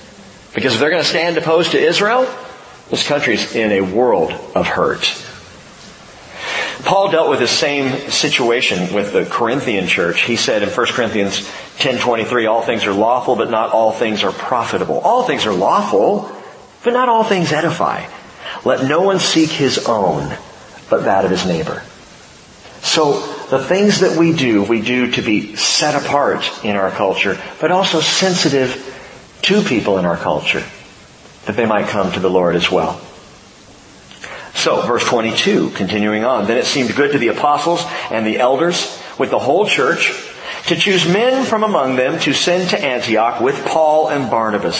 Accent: American